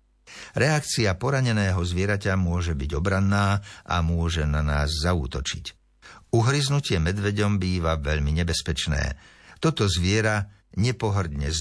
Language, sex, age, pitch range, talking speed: Slovak, male, 60-79, 80-110 Hz, 105 wpm